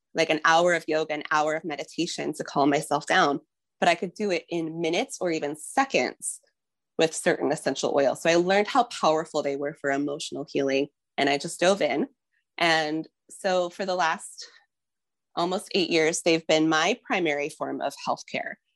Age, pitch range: 20-39, 155-210 Hz